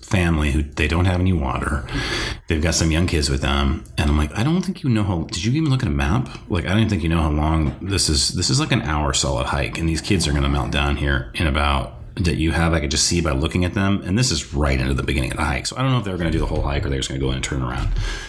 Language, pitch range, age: English, 75-95 Hz, 30-49